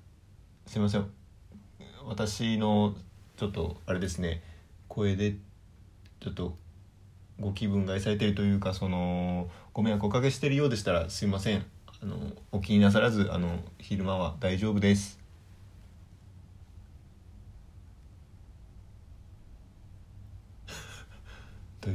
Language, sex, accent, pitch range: Japanese, male, native, 90-105 Hz